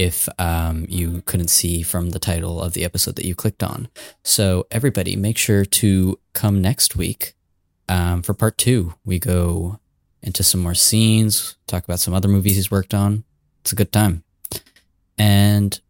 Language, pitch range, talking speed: English, 90-105 Hz, 175 wpm